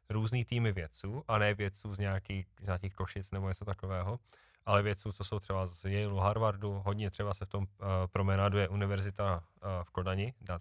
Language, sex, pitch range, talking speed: Czech, male, 95-110 Hz, 200 wpm